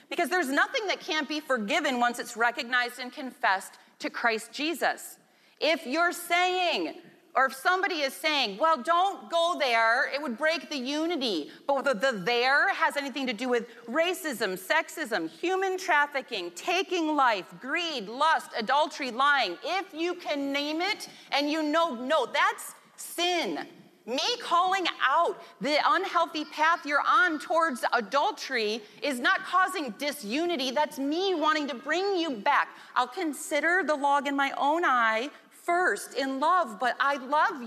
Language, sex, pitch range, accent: English, female, 245-335 Hz, American